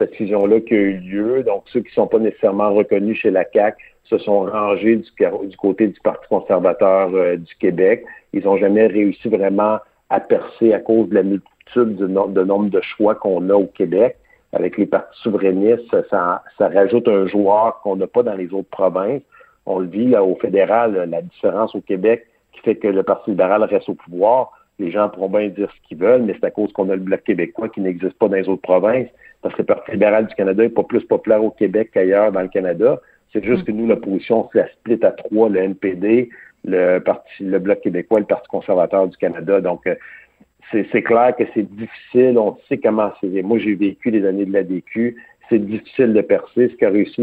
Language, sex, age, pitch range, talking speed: French, male, 60-79, 95-115 Hz, 225 wpm